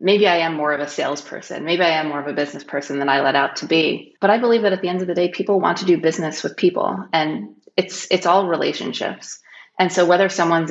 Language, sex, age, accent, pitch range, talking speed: English, female, 30-49, American, 145-175 Hz, 265 wpm